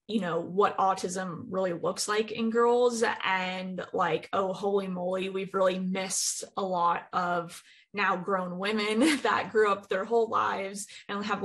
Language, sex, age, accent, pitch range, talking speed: English, female, 20-39, American, 190-225 Hz, 165 wpm